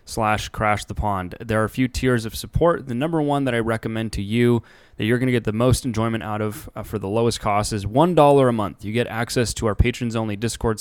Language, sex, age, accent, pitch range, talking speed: English, male, 20-39, American, 105-125 Hz, 255 wpm